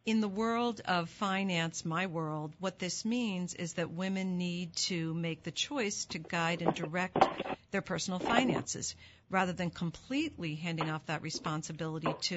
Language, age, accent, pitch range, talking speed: English, 50-69, American, 160-190 Hz, 160 wpm